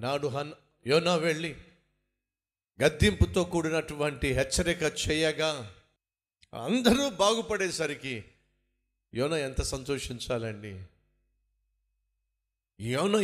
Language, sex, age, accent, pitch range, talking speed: Telugu, male, 50-69, native, 115-190 Hz, 65 wpm